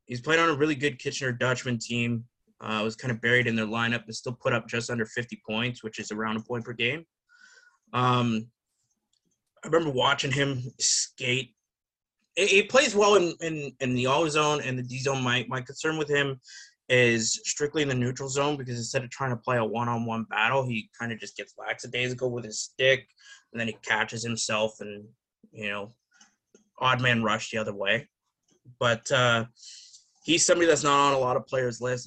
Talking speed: 200 wpm